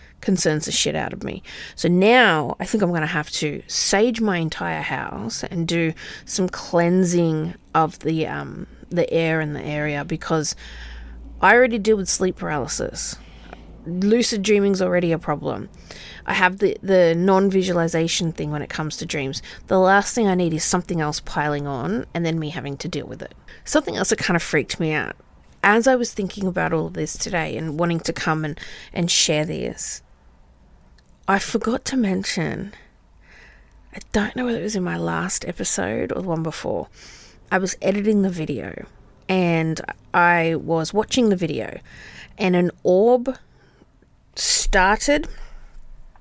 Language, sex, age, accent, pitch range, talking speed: English, female, 30-49, Australian, 155-195 Hz, 170 wpm